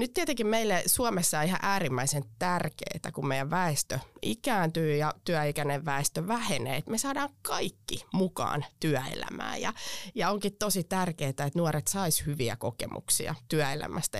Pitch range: 145-195 Hz